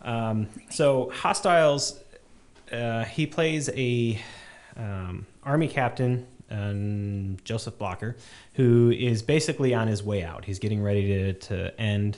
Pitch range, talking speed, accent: 95-115 Hz, 130 wpm, American